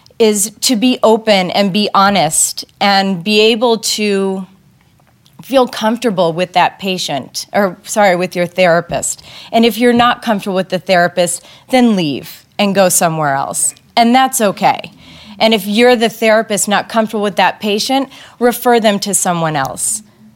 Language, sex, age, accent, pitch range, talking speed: English, female, 30-49, American, 185-220 Hz, 155 wpm